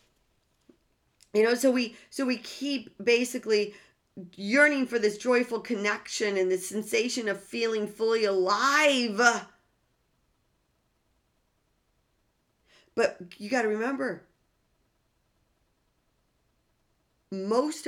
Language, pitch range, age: English, 175-230 Hz, 40-59